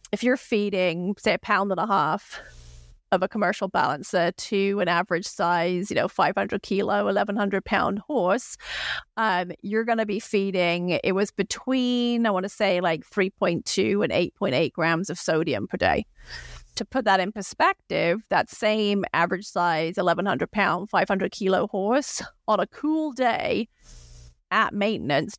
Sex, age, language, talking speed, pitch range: female, 30-49, English, 155 wpm, 180-215 Hz